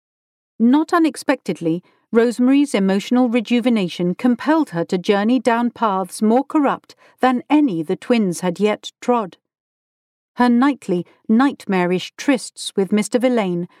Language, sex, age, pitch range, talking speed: English, female, 50-69, 195-255 Hz, 115 wpm